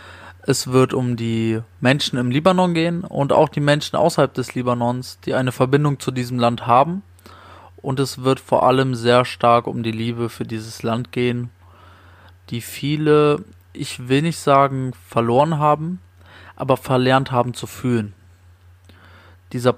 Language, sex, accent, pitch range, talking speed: German, male, German, 110-130 Hz, 150 wpm